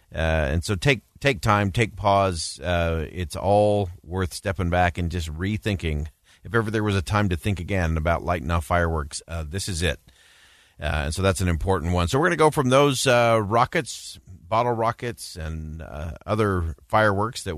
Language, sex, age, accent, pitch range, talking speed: English, male, 40-59, American, 85-110 Hz, 195 wpm